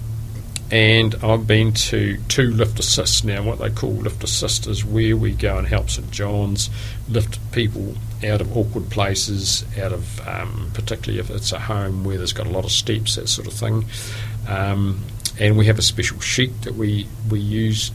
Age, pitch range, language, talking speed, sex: 50-69, 105-115 Hz, English, 190 wpm, male